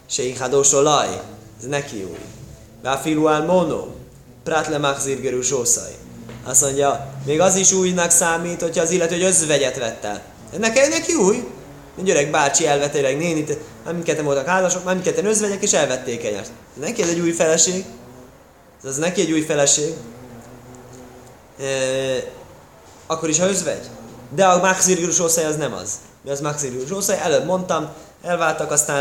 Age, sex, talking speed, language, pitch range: 20-39, male, 140 wpm, Hungarian, 125-165 Hz